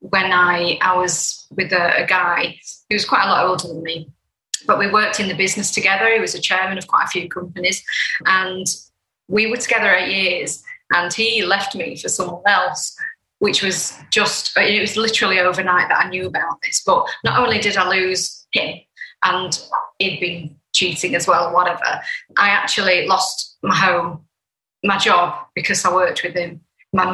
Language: English